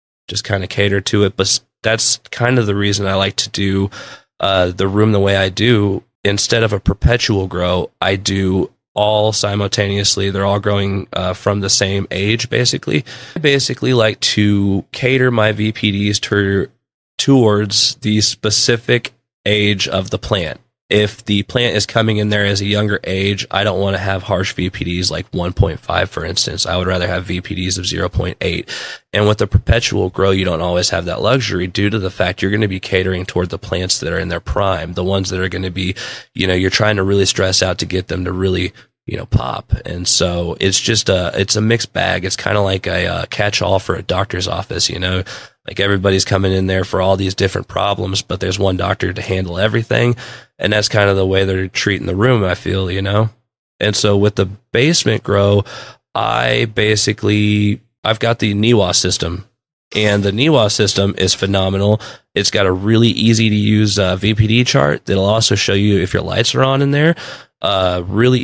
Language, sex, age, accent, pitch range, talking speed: English, male, 20-39, American, 95-110 Hz, 200 wpm